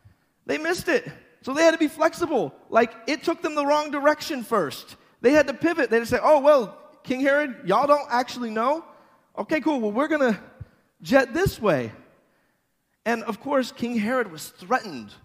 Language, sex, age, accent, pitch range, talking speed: English, male, 30-49, American, 155-260 Hz, 190 wpm